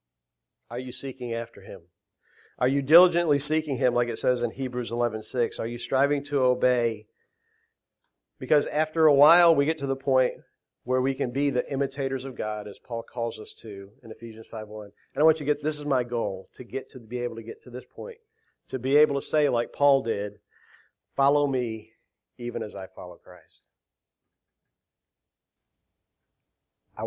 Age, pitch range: 50-69, 105-140 Hz